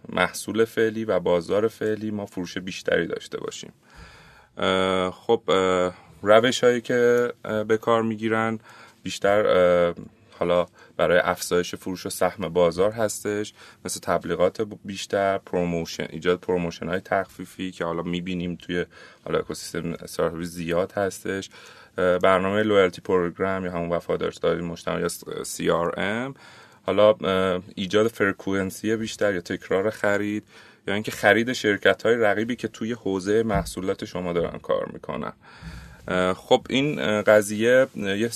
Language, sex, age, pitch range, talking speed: Persian, male, 30-49, 90-115 Hz, 125 wpm